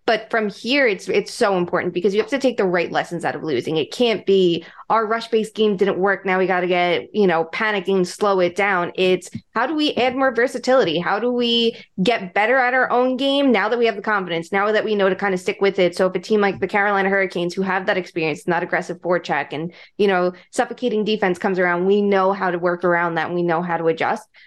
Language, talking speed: English, 255 wpm